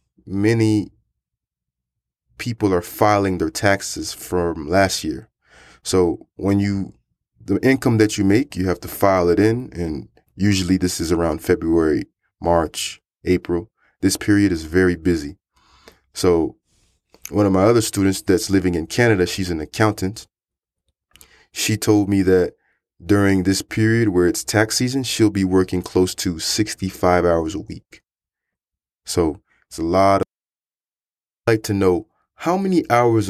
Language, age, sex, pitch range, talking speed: English, 20-39, male, 90-110 Hz, 145 wpm